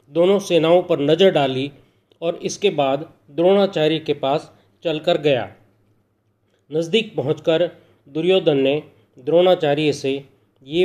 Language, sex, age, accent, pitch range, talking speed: Hindi, male, 40-59, native, 115-175 Hz, 110 wpm